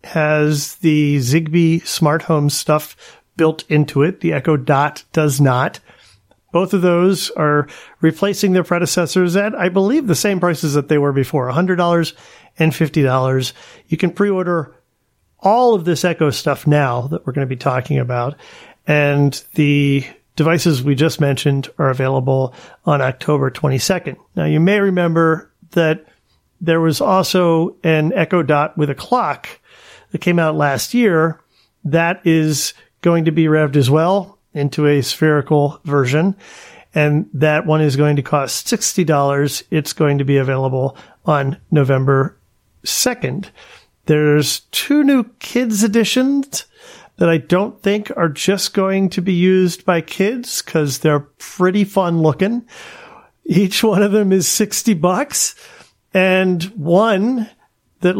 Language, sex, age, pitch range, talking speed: English, male, 40-59, 145-185 Hz, 145 wpm